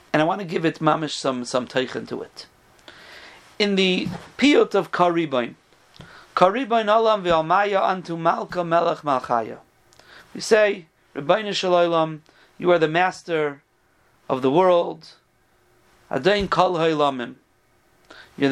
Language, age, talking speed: English, 40-59, 125 wpm